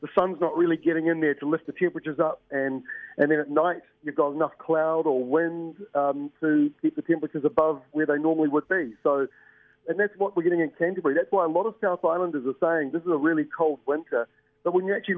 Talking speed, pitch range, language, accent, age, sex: 240 wpm, 145-175 Hz, English, Australian, 40-59, male